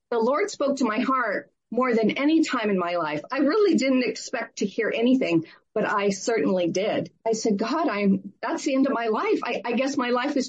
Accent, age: American, 50-69